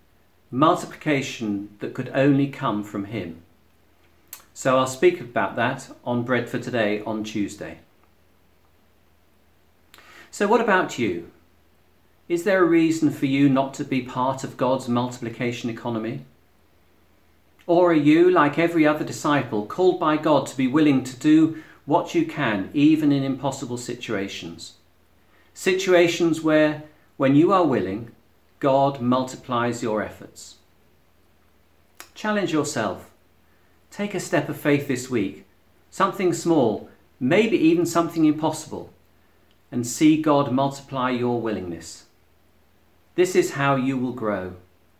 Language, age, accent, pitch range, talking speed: English, 40-59, British, 90-140 Hz, 125 wpm